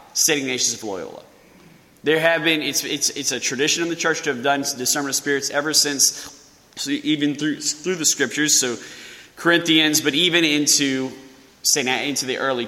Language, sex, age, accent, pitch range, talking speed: English, male, 20-39, American, 125-155 Hz, 185 wpm